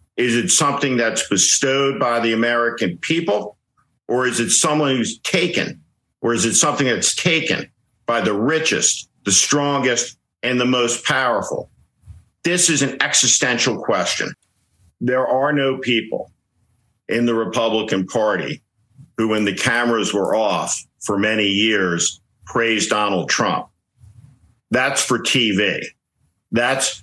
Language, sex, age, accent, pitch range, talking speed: English, male, 50-69, American, 105-130 Hz, 130 wpm